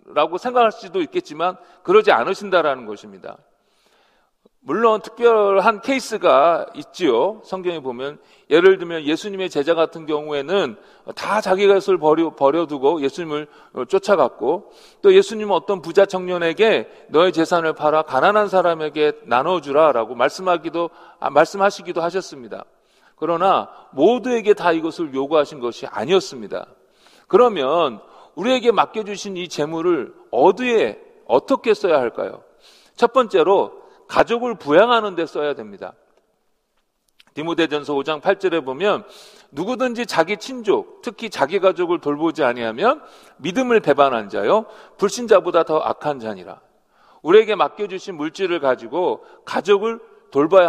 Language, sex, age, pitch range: Korean, male, 40-59, 165-240 Hz